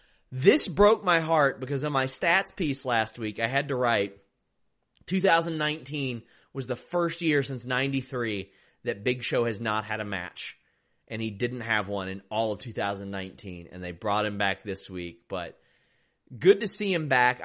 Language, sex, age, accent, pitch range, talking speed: English, male, 30-49, American, 115-175 Hz, 180 wpm